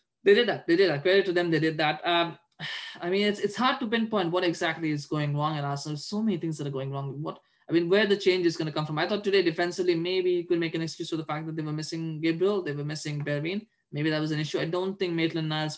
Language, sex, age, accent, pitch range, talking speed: English, male, 20-39, Indian, 145-175 Hz, 290 wpm